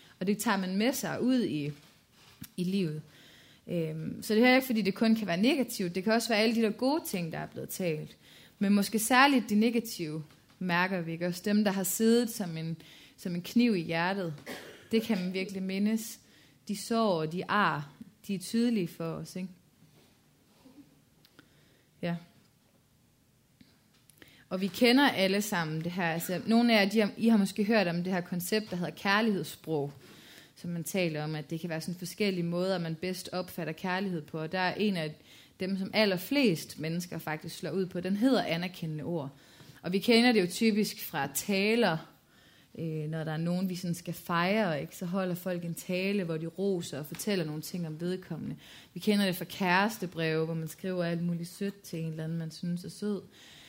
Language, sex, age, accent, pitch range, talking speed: Danish, female, 30-49, native, 165-210 Hz, 200 wpm